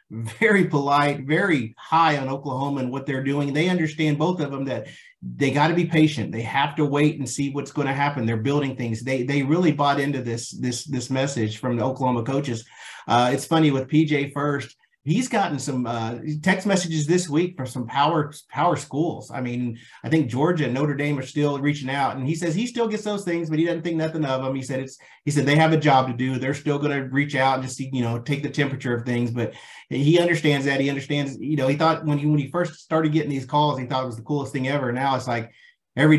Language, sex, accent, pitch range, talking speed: English, male, American, 130-155 Hz, 250 wpm